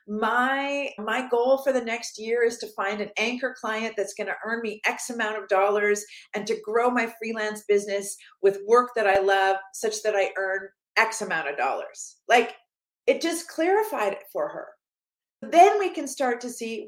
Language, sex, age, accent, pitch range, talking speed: English, female, 40-59, American, 215-275 Hz, 190 wpm